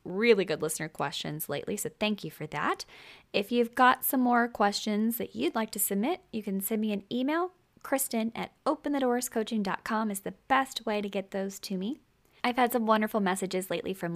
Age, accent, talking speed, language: 10-29, American, 195 wpm, English